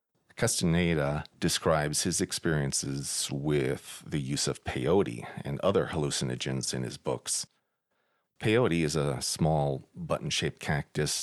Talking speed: 110 wpm